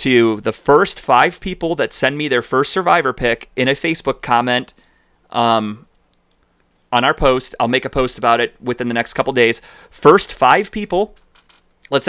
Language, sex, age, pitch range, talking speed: English, male, 30-49, 115-140 Hz, 175 wpm